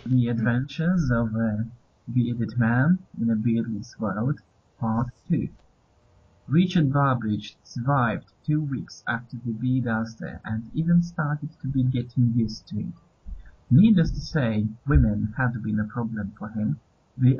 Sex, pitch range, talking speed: male, 110-135 Hz, 140 wpm